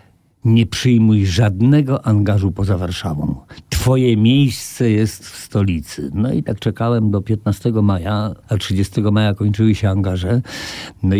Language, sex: Polish, male